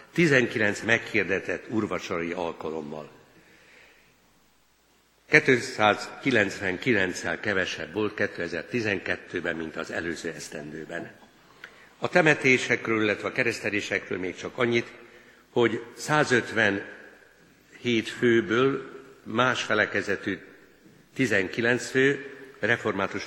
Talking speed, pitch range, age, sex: 70 wpm, 100-125 Hz, 60-79, male